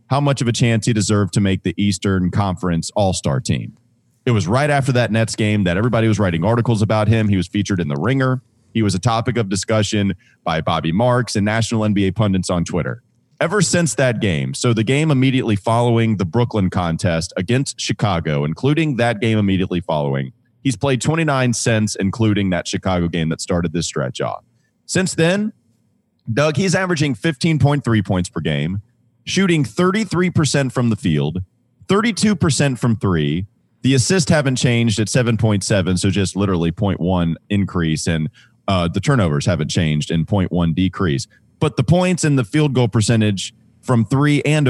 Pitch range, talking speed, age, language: 100-140 Hz, 175 wpm, 30-49, English